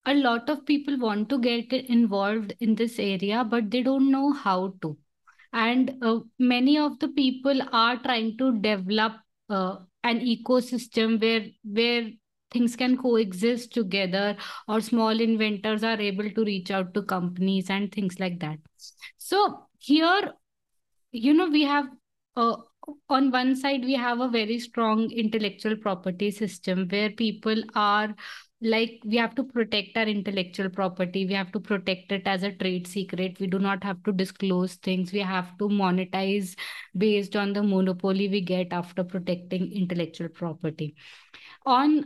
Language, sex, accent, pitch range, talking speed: English, female, Indian, 195-250 Hz, 155 wpm